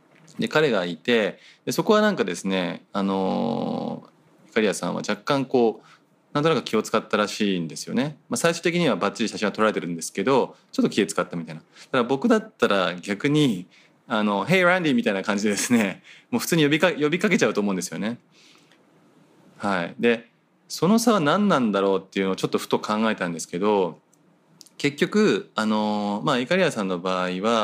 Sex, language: male, Japanese